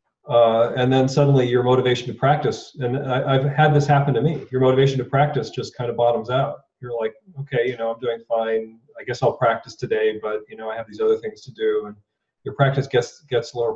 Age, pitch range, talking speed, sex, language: 40-59, 115-145 Hz, 230 wpm, male, English